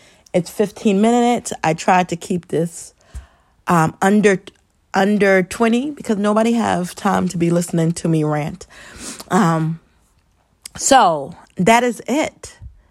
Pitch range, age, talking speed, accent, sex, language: 180-225 Hz, 30-49, 125 wpm, American, female, English